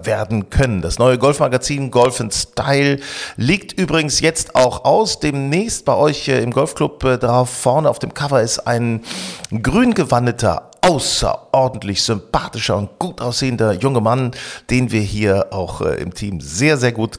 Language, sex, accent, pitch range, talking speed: German, male, German, 105-140 Hz, 150 wpm